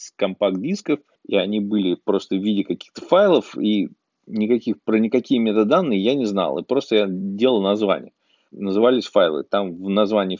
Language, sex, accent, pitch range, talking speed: Russian, male, native, 100-130 Hz, 155 wpm